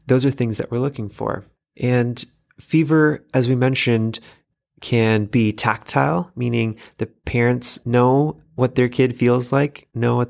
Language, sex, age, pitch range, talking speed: English, male, 20-39, 105-125 Hz, 150 wpm